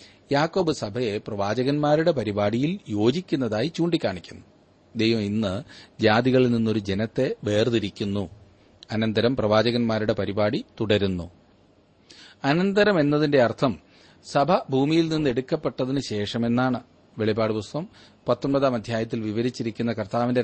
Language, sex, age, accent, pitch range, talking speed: Malayalam, male, 30-49, native, 110-150 Hz, 85 wpm